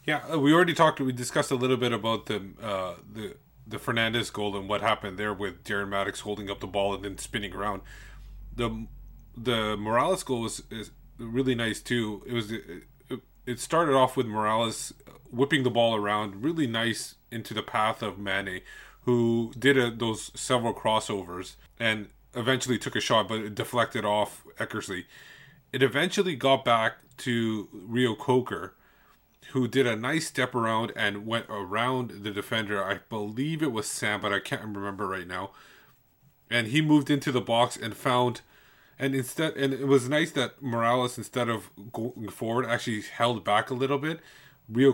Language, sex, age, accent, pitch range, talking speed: English, male, 30-49, American, 110-135 Hz, 175 wpm